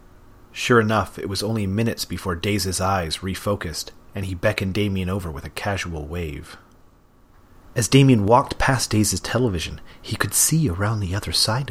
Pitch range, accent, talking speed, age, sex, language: 85-105 Hz, American, 165 wpm, 30-49, male, English